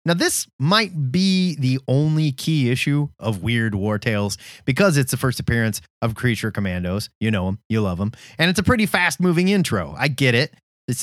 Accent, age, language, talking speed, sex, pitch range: American, 30-49, English, 195 wpm, male, 115-185 Hz